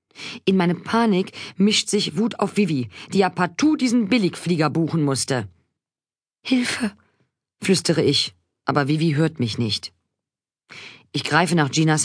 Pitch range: 120-180 Hz